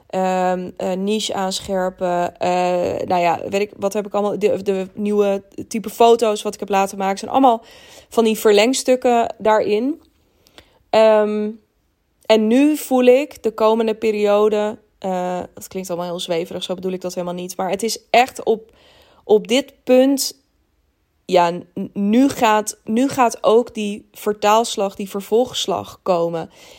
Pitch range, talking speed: 200-235 Hz, 155 wpm